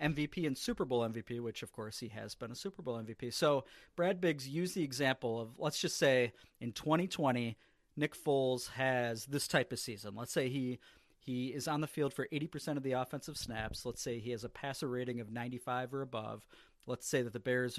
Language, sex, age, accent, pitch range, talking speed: English, male, 40-59, American, 120-150 Hz, 215 wpm